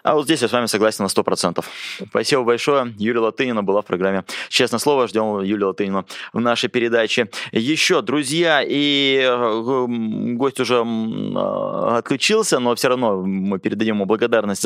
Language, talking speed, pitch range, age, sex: Russian, 150 wpm, 110-140 Hz, 20-39, male